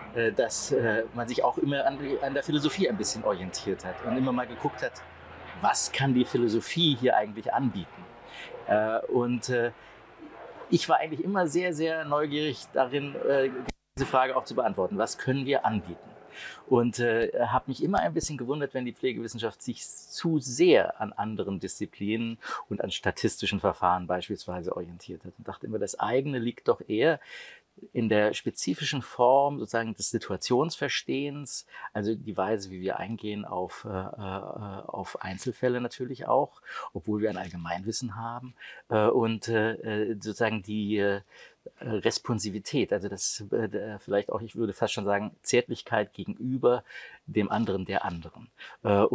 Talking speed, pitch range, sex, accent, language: 155 wpm, 105-130 Hz, male, German, German